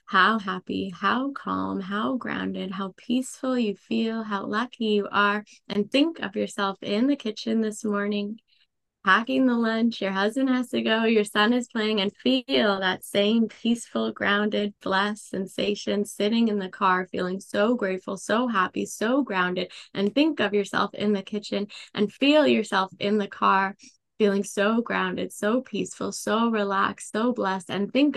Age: 20-39